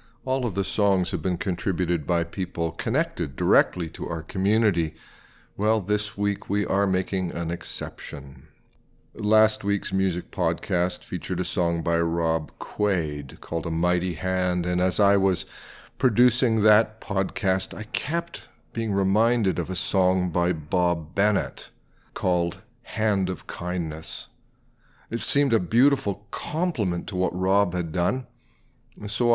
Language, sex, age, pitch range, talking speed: English, male, 50-69, 90-115 Hz, 140 wpm